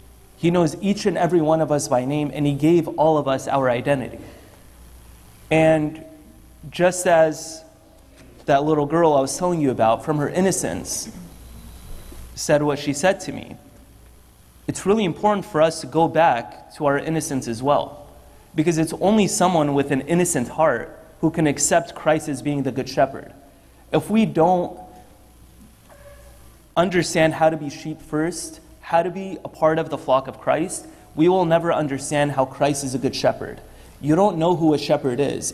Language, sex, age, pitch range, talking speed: English, male, 30-49, 135-165 Hz, 175 wpm